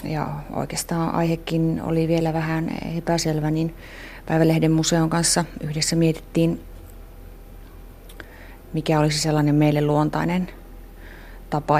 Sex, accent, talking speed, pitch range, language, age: female, native, 95 wpm, 140-160 Hz, Finnish, 30-49